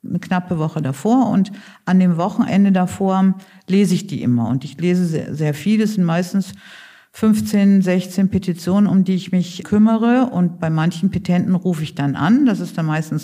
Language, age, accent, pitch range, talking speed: German, 50-69, German, 170-215 Hz, 190 wpm